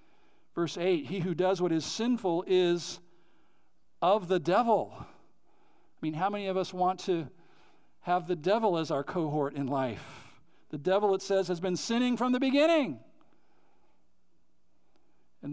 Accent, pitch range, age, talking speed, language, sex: American, 185-280 Hz, 50-69, 150 wpm, English, male